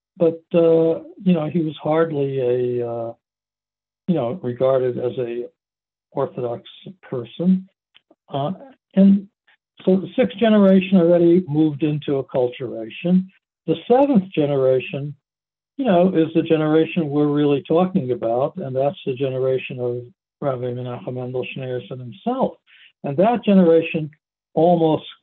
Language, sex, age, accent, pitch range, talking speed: English, male, 60-79, American, 130-175 Hz, 125 wpm